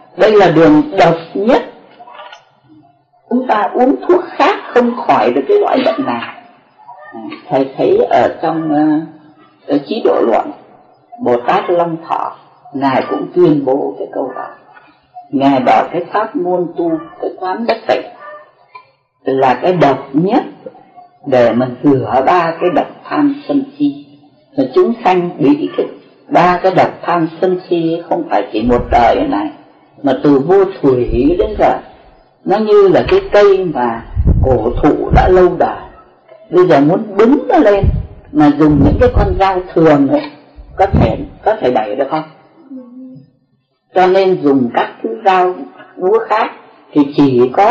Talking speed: 155 wpm